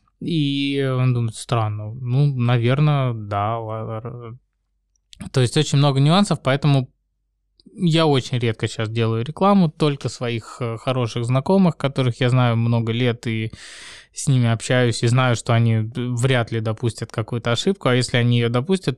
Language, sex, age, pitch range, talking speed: Russian, male, 20-39, 115-135 Hz, 145 wpm